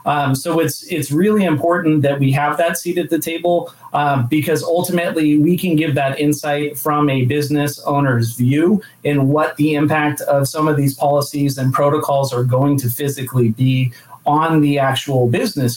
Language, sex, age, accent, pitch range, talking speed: English, male, 30-49, American, 135-155 Hz, 180 wpm